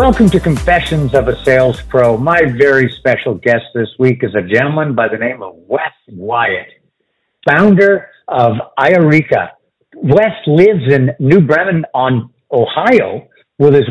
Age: 50-69